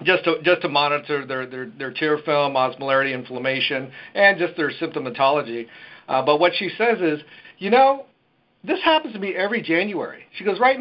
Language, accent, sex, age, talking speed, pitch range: English, American, male, 50-69, 185 wpm, 135-175 Hz